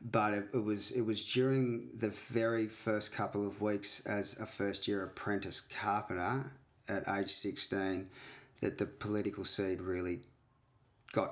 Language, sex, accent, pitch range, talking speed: English, male, Australian, 100-120 Hz, 150 wpm